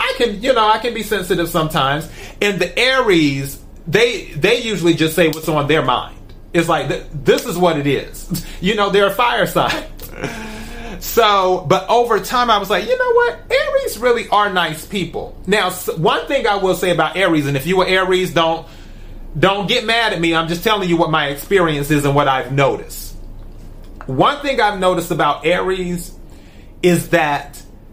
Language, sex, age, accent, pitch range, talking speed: English, male, 30-49, American, 140-190 Hz, 190 wpm